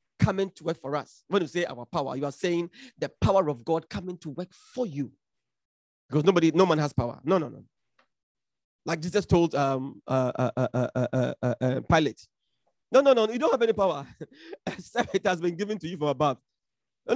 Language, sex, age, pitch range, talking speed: English, male, 40-59, 145-245 Hz, 205 wpm